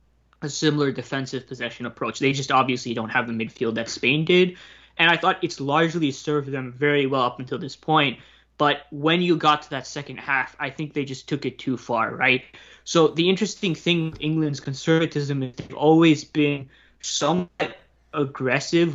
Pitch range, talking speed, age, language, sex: 130-155 Hz, 185 wpm, 20-39, English, male